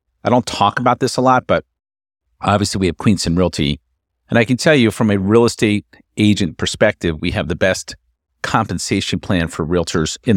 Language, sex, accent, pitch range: English, male, American, 85-115 Hz